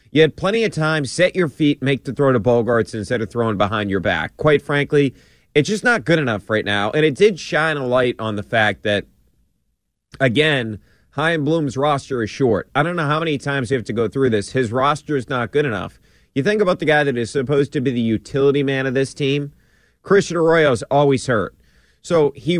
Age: 30-49